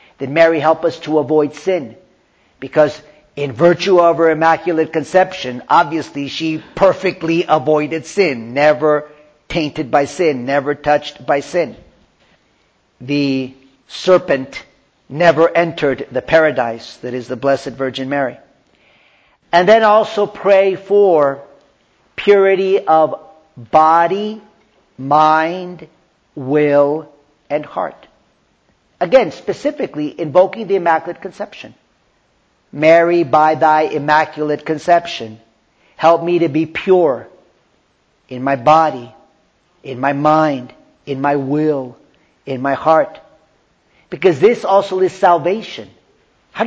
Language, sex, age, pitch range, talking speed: English, male, 50-69, 145-190 Hz, 110 wpm